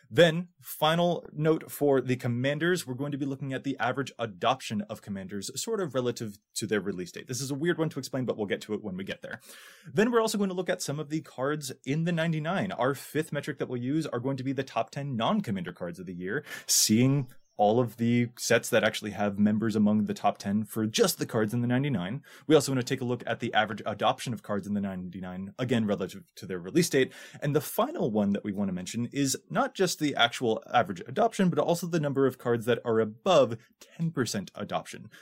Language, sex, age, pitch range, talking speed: English, male, 20-39, 110-155 Hz, 240 wpm